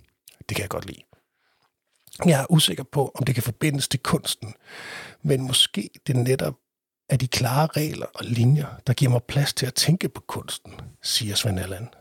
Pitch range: 110-140 Hz